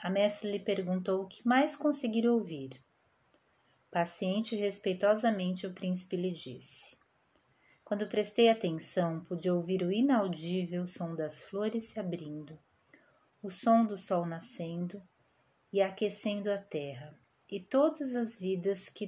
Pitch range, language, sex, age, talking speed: 170-200 Hz, Portuguese, female, 30-49, 130 wpm